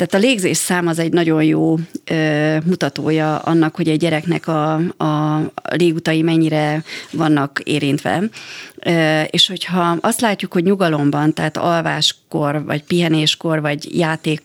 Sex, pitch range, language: female, 155-175 Hz, Hungarian